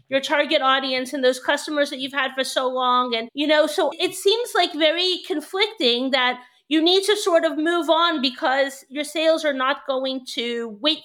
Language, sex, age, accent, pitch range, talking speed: English, female, 40-59, American, 255-315 Hz, 200 wpm